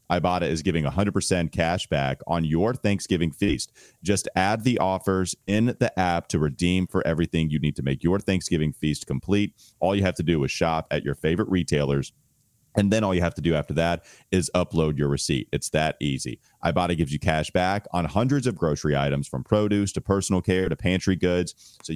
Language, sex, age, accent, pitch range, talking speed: English, male, 30-49, American, 80-100 Hz, 205 wpm